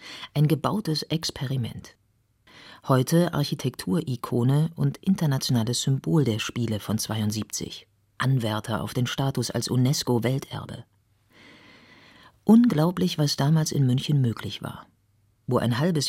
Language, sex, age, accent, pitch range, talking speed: German, female, 40-59, German, 115-155 Hz, 105 wpm